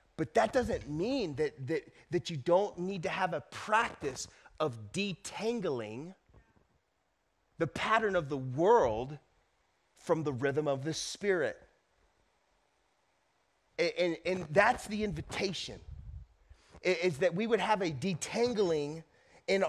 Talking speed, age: 120 wpm, 30-49